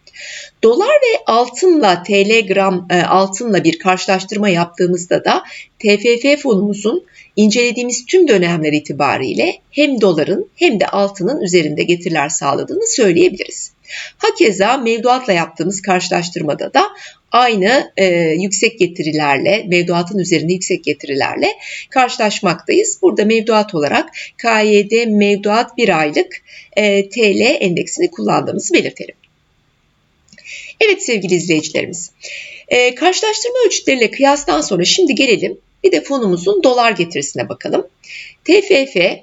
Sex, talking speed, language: female, 105 wpm, Turkish